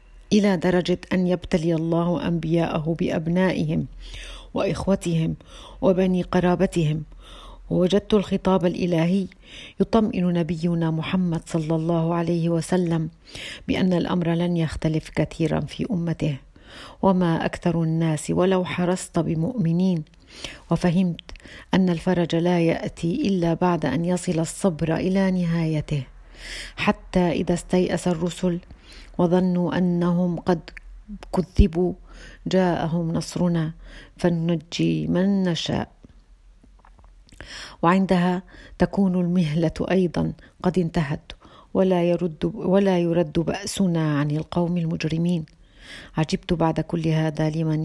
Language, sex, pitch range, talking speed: Arabic, female, 160-180 Hz, 95 wpm